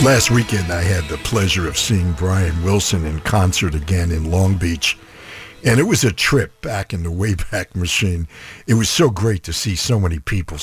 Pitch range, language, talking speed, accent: 85-110 Hz, English, 200 wpm, American